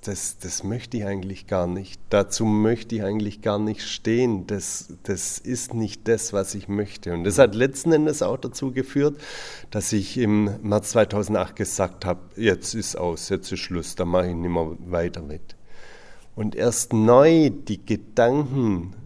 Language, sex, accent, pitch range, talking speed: German, male, German, 95-120 Hz, 175 wpm